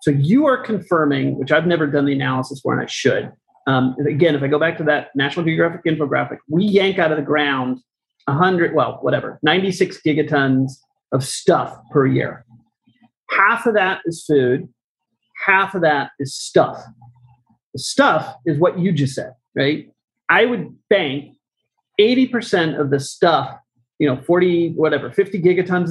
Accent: American